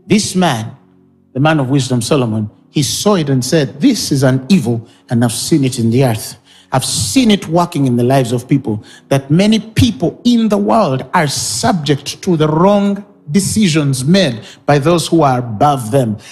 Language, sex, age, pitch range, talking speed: English, male, 50-69, 140-220 Hz, 190 wpm